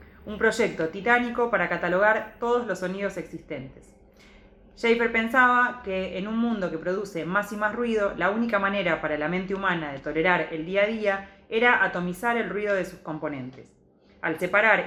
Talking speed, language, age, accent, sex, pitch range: 175 wpm, Spanish, 20-39, Argentinian, female, 175-215 Hz